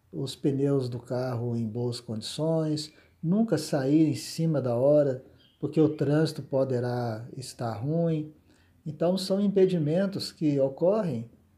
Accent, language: Brazilian, Portuguese